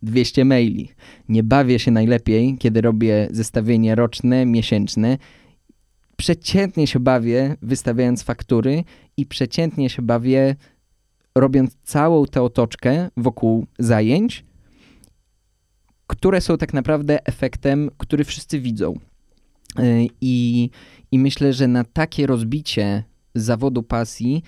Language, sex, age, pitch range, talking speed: Polish, male, 20-39, 110-130 Hz, 105 wpm